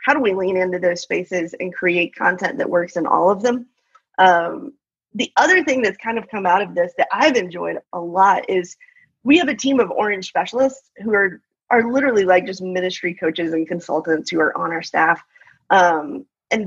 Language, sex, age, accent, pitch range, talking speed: English, female, 30-49, American, 180-225 Hz, 205 wpm